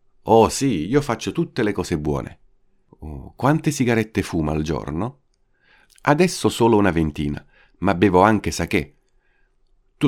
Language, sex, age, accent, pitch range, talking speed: Italian, male, 50-69, native, 80-125 Hz, 135 wpm